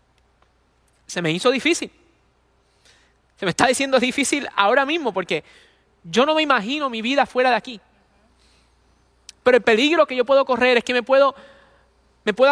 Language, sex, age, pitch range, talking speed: English, male, 20-39, 200-250 Hz, 160 wpm